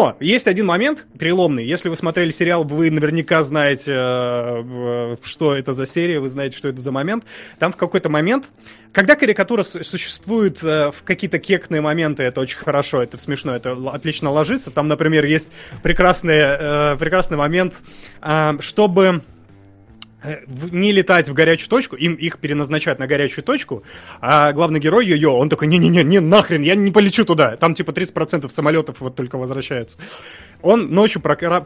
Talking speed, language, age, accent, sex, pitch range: 160 wpm, Russian, 20-39, native, male, 140-180 Hz